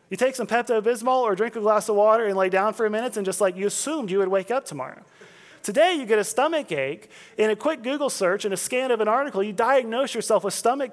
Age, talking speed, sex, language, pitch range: 30-49, 265 wpm, male, English, 205-285 Hz